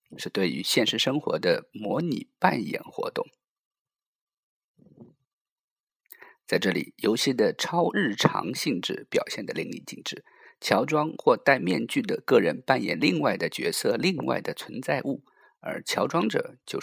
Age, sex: 50-69, male